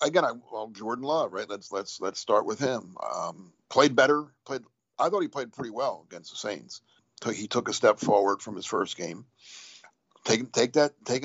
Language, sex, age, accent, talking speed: English, male, 50-69, American, 210 wpm